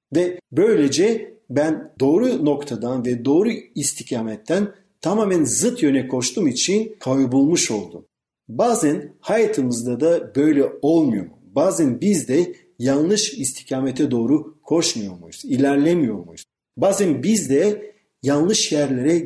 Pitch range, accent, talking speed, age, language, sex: 135-205 Hz, native, 110 wpm, 50-69, Turkish, male